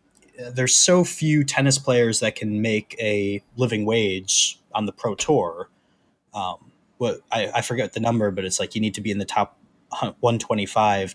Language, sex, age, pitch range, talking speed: English, male, 20-39, 100-130 Hz, 180 wpm